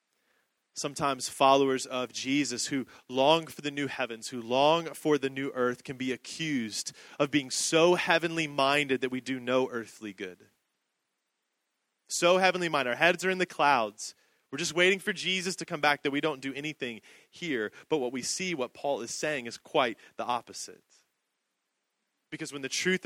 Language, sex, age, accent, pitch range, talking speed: English, male, 30-49, American, 135-175 Hz, 180 wpm